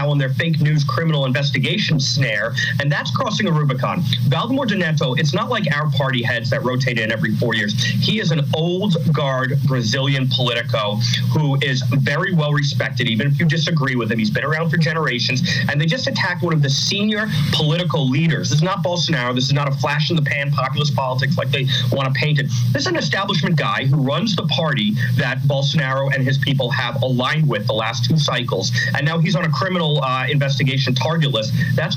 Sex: male